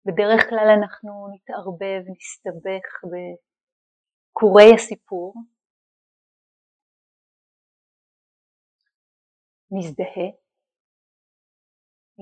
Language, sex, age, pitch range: Hebrew, female, 30-49, 180-220 Hz